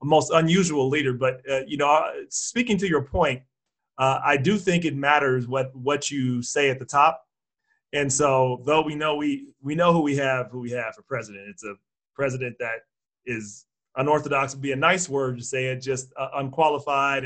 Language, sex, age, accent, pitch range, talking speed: English, male, 40-59, American, 130-145 Hz, 200 wpm